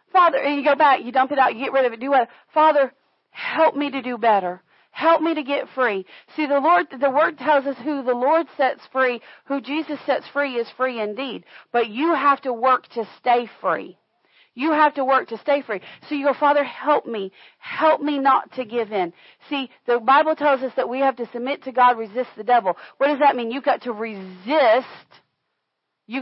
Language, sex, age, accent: English, female, 40-59, American